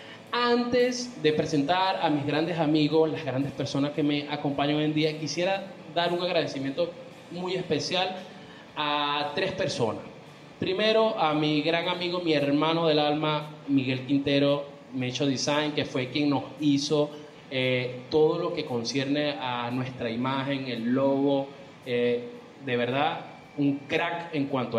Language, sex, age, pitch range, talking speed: Spanish, male, 20-39, 125-150 Hz, 145 wpm